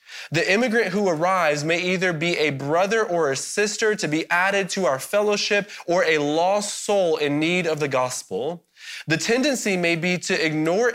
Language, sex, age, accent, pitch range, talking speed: English, male, 20-39, American, 160-210 Hz, 180 wpm